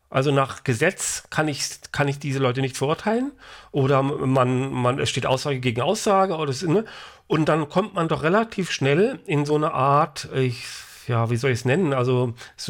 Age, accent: 40-59, German